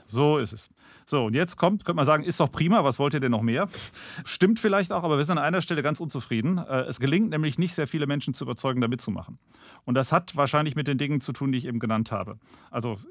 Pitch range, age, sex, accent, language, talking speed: 120-150 Hz, 40-59, male, German, German, 255 wpm